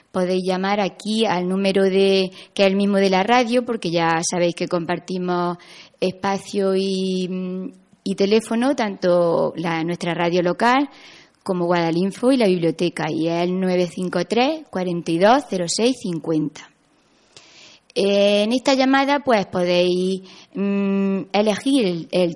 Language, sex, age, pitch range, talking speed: Spanish, female, 20-39, 180-225 Hz, 120 wpm